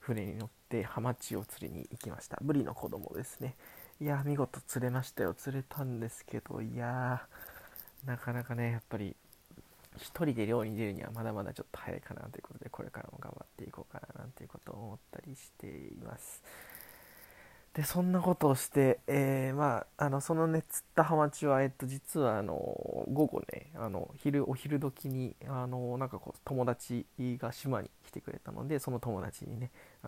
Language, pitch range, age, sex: Japanese, 120-150 Hz, 20-39, male